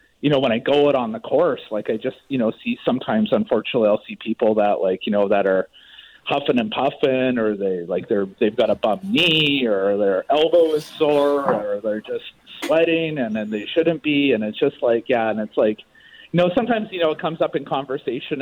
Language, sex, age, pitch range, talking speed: English, male, 30-49, 115-155 Hz, 230 wpm